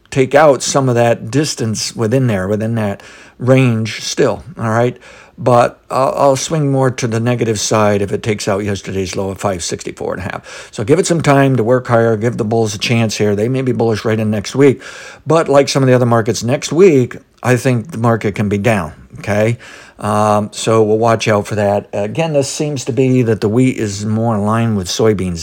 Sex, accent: male, American